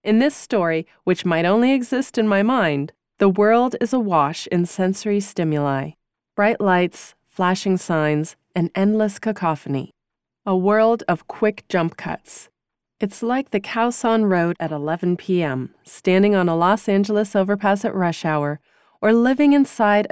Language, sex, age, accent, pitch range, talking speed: English, female, 30-49, American, 170-230 Hz, 150 wpm